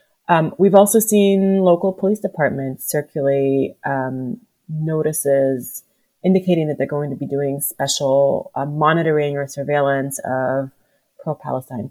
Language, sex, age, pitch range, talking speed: English, female, 30-49, 135-165 Hz, 120 wpm